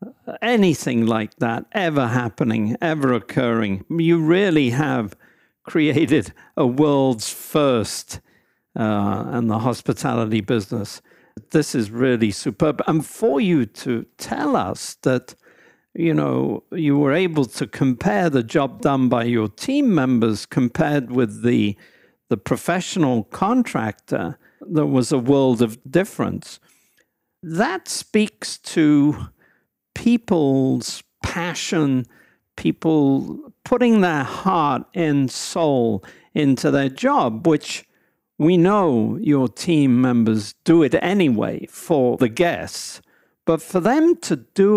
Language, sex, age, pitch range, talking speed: English, male, 50-69, 120-165 Hz, 115 wpm